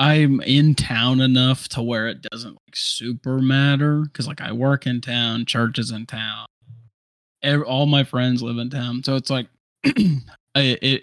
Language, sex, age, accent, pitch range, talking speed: English, male, 20-39, American, 110-130 Hz, 170 wpm